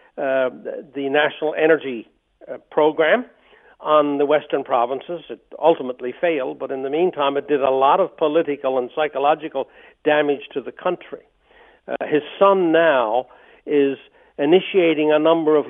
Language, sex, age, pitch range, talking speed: English, male, 60-79, 145-180 Hz, 150 wpm